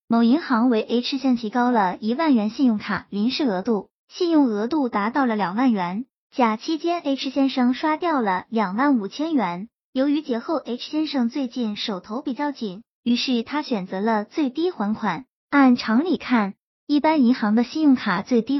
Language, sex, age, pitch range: Chinese, male, 20-39, 215-275 Hz